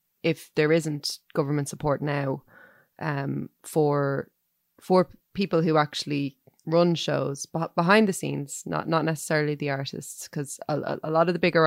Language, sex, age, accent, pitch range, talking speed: English, female, 20-39, Irish, 145-165 Hz, 150 wpm